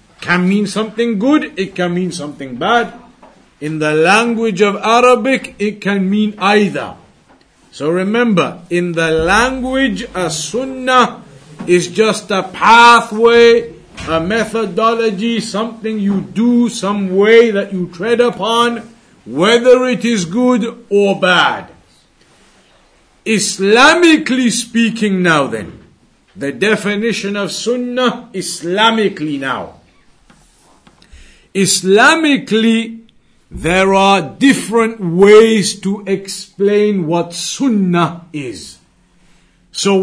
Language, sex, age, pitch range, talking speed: English, male, 50-69, 190-235 Hz, 100 wpm